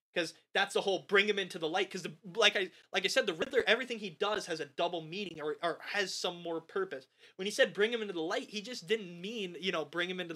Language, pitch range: English, 160-220 Hz